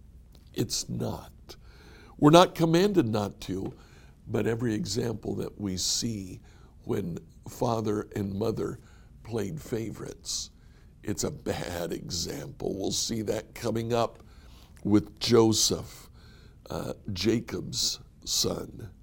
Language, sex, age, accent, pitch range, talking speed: English, male, 60-79, American, 90-130 Hz, 105 wpm